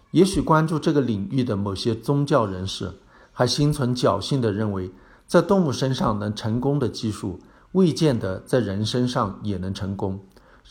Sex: male